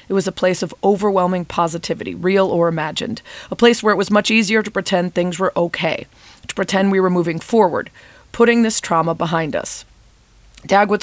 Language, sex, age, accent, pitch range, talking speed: English, female, 30-49, American, 170-200 Hz, 185 wpm